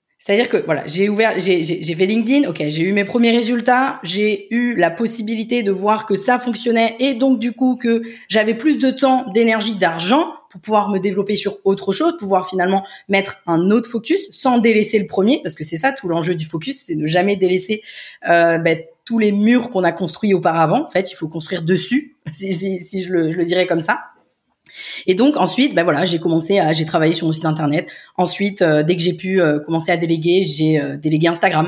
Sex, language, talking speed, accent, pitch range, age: female, French, 230 wpm, French, 170-230 Hz, 20-39